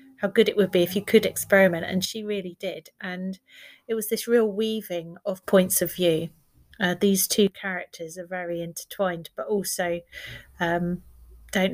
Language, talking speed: English, 175 wpm